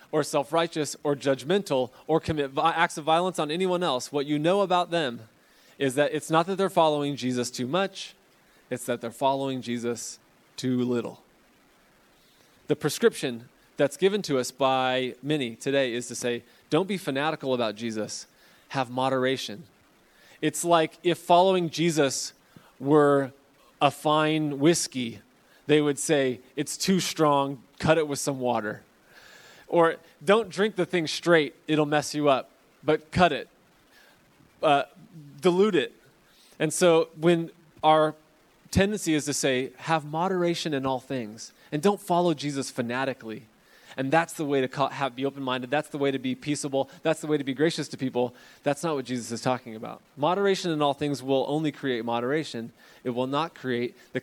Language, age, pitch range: English, 20-39, 130-160 Hz